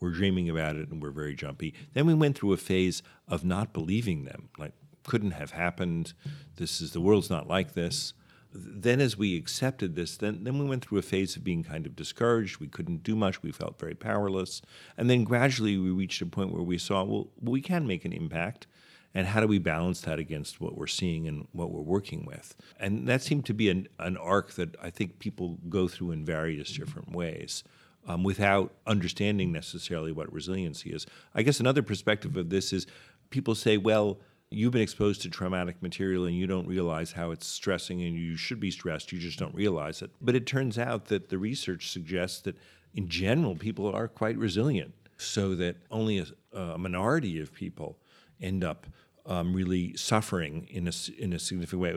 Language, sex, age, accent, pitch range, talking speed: English, male, 50-69, American, 90-110 Hz, 200 wpm